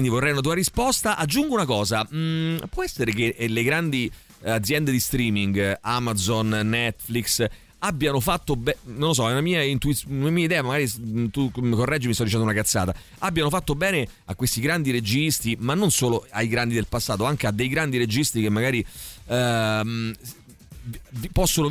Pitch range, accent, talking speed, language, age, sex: 110-140 Hz, native, 175 wpm, Italian, 40-59, male